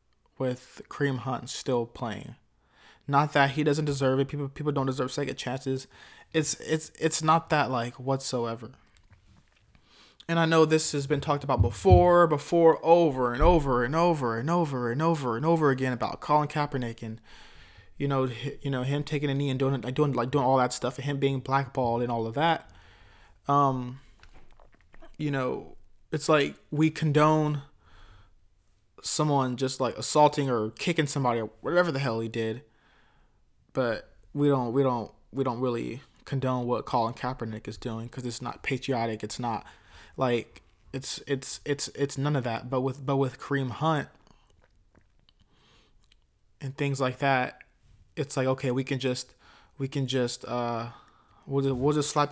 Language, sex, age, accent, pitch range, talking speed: English, male, 20-39, American, 120-145 Hz, 170 wpm